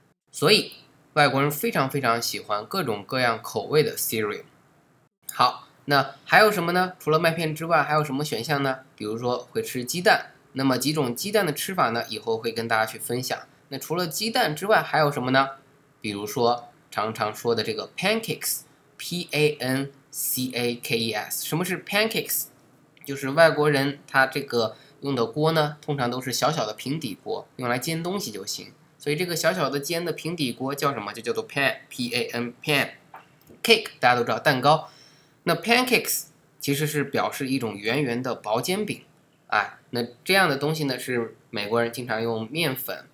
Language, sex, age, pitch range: Chinese, male, 20-39, 120-155 Hz